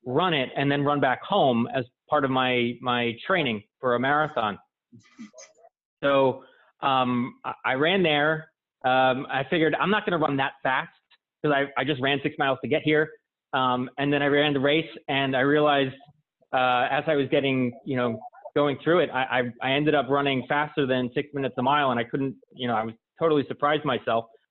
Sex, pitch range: male, 125-150 Hz